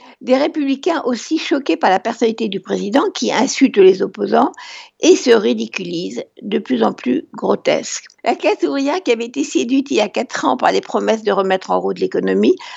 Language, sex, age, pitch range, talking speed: French, female, 60-79, 205-305 Hz, 195 wpm